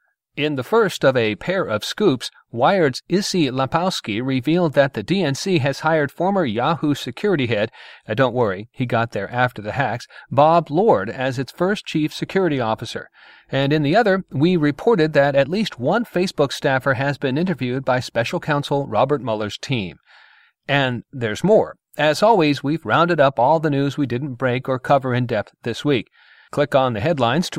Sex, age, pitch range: male, 40-59, 125-155 Hz